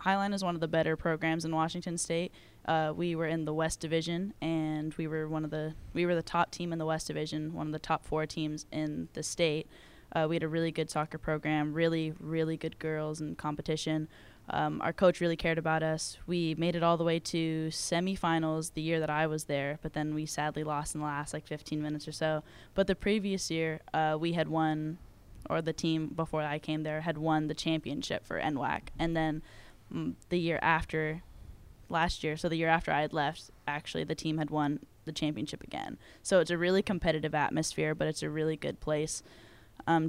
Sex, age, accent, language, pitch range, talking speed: female, 10-29, American, English, 155-165 Hz, 215 wpm